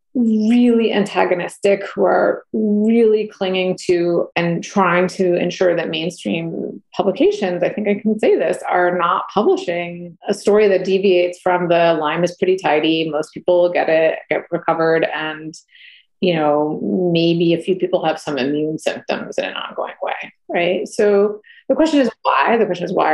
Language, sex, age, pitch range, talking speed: English, female, 30-49, 175-235 Hz, 165 wpm